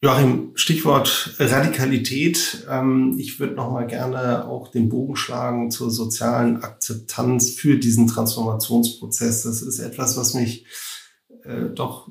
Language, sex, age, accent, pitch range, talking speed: German, male, 30-49, German, 115-130 Hz, 120 wpm